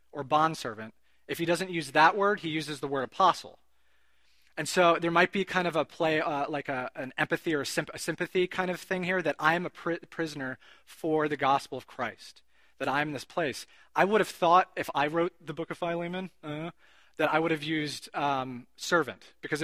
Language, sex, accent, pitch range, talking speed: English, male, American, 140-175 Hz, 210 wpm